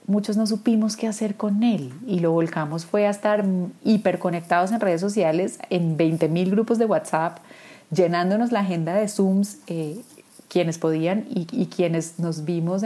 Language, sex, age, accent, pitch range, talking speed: Spanish, female, 30-49, Colombian, 165-205 Hz, 165 wpm